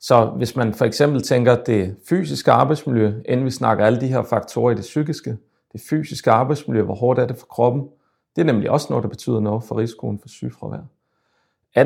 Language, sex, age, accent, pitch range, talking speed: Danish, male, 40-59, native, 115-145 Hz, 215 wpm